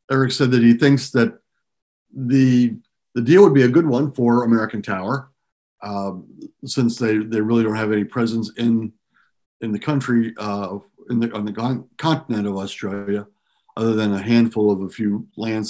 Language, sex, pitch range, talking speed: English, male, 105-120 Hz, 175 wpm